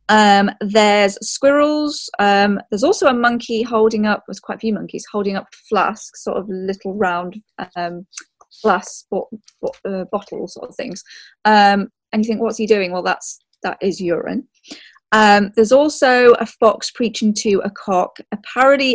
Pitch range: 195-240 Hz